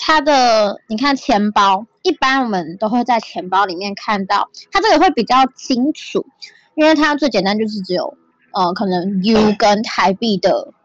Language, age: Chinese, 10-29